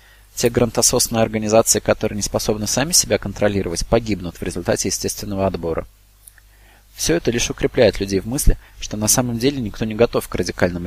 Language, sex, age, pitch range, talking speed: Russian, male, 20-39, 95-110 Hz, 165 wpm